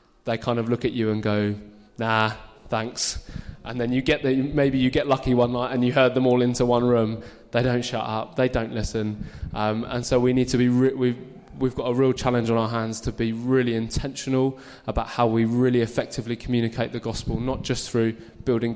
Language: English